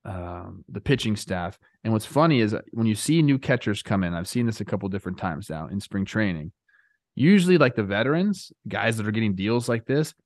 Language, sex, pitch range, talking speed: English, male, 110-145 Hz, 215 wpm